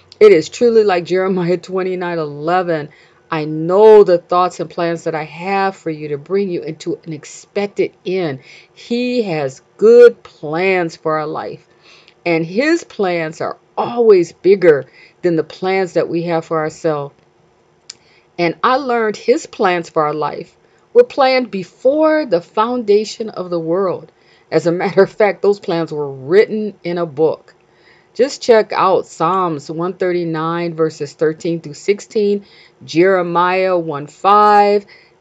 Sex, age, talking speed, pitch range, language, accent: female, 40-59, 145 wpm, 165-210 Hz, English, American